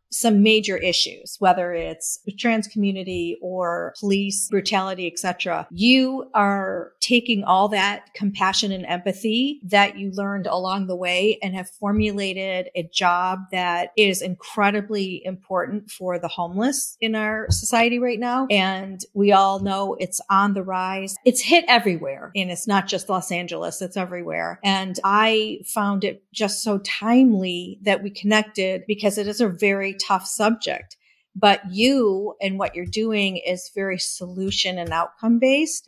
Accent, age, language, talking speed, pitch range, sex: American, 50-69, English, 150 wpm, 180-210 Hz, female